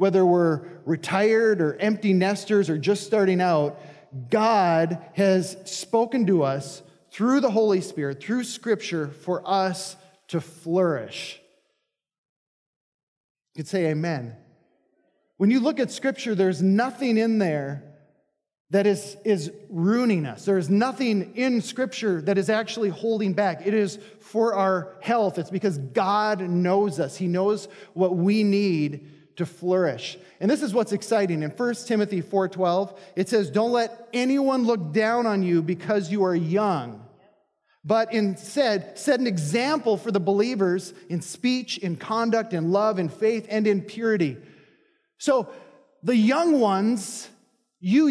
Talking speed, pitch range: 145 wpm, 180-230 Hz